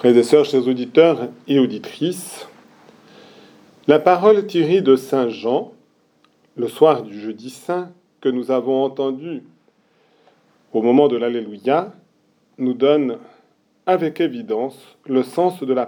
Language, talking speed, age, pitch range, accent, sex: French, 130 wpm, 40-59, 130-210 Hz, French, male